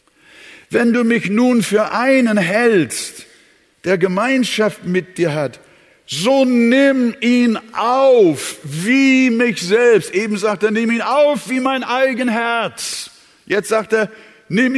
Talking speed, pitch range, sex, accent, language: 135 wpm, 155-260 Hz, male, German, German